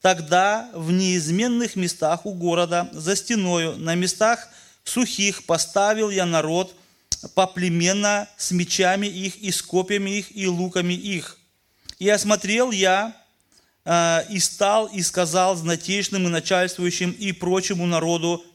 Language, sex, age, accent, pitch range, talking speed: Russian, male, 30-49, native, 170-200 Hz, 120 wpm